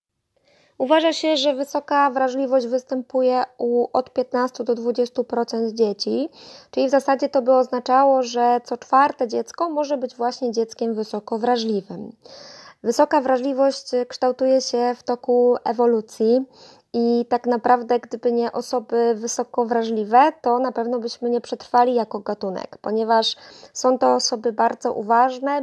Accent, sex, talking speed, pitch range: native, female, 130 wpm, 230-265 Hz